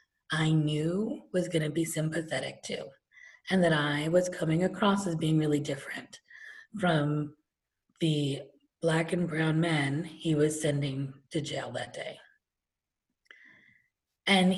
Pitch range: 150-185 Hz